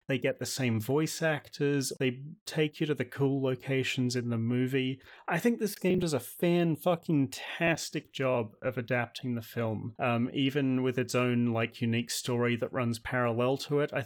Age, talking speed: 30-49, 180 wpm